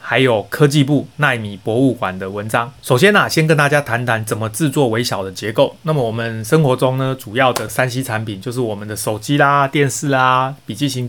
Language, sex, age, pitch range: Chinese, male, 30-49, 115-135 Hz